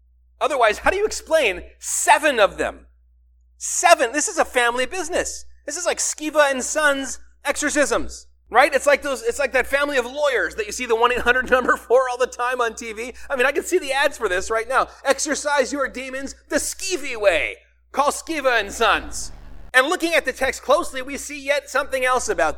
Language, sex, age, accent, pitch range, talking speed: English, male, 30-49, American, 225-295 Hz, 200 wpm